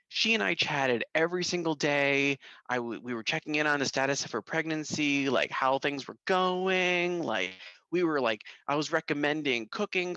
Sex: male